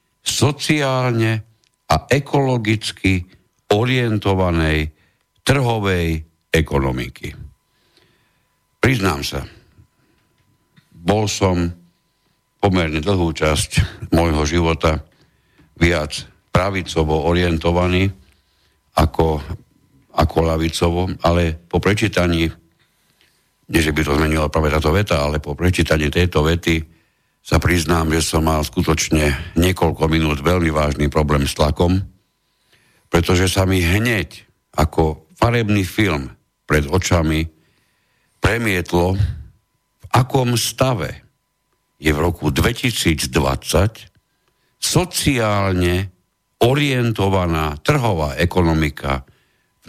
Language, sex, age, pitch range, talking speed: Slovak, male, 60-79, 80-105 Hz, 85 wpm